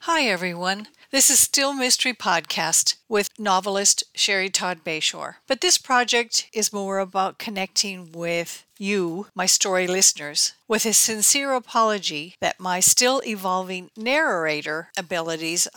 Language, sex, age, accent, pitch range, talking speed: English, female, 50-69, American, 185-235 Hz, 120 wpm